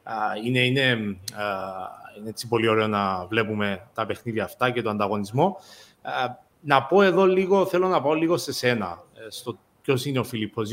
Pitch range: 110-140 Hz